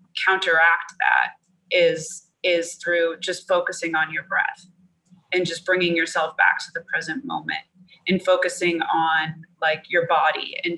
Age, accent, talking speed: 20-39, American, 145 wpm